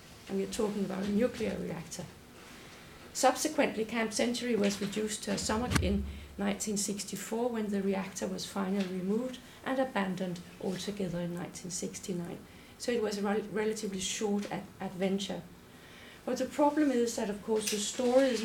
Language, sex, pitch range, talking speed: English, female, 195-230 Hz, 145 wpm